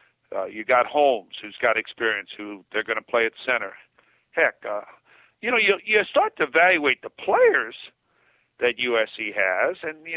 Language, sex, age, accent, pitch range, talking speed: English, male, 50-69, American, 125-155 Hz, 175 wpm